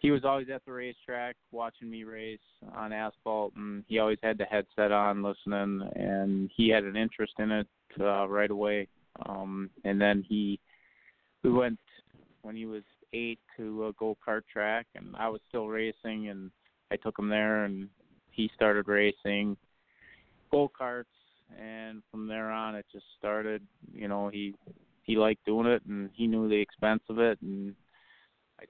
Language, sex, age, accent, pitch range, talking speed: English, male, 20-39, American, 100-110 Hz, 170 wpm